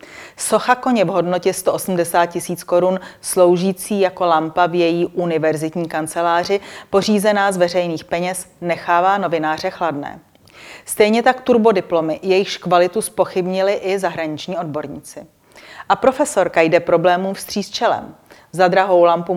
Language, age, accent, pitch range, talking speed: Czech, 30-49, native, 170-195 Hz, 125 wpm